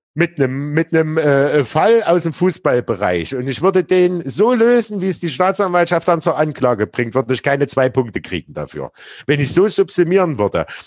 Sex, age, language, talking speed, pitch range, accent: male, 50-69, German, 195 wpm, 130-175 Hz, German